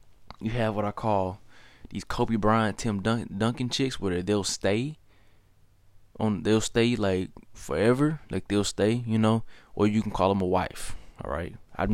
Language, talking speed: English, 175 wpm